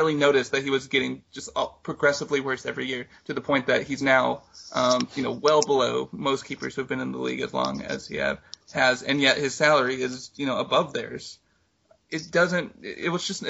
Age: 30-49